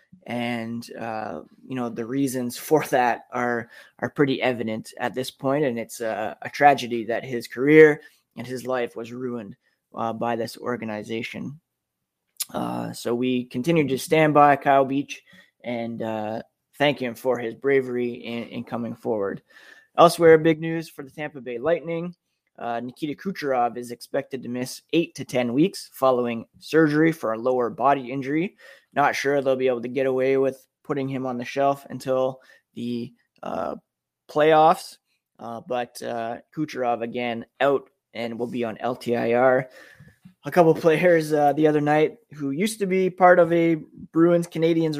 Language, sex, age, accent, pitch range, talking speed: English, male, 20-39, American, 120-150 Hz, 165 wpm